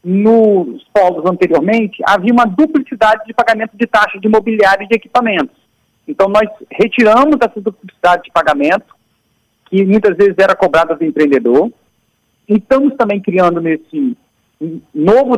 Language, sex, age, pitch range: Portuguese, male, 50-69, 195-245 Hz